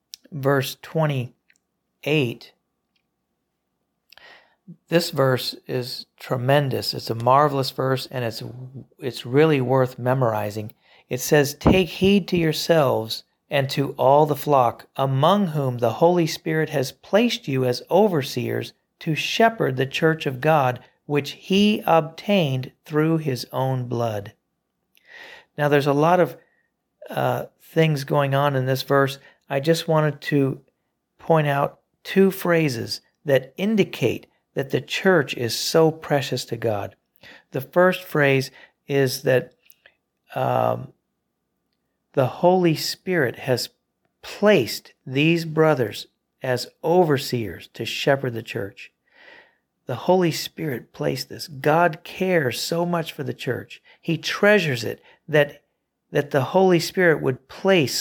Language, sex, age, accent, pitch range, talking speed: English, male, 50-69, American, 130-170 Hz, 125 wpm